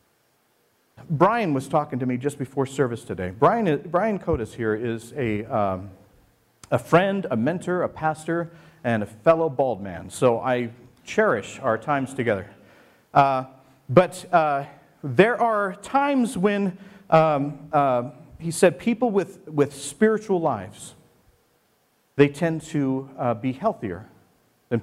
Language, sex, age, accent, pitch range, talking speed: English, male, 50-69, American, 120-170 Hz, 135 wpm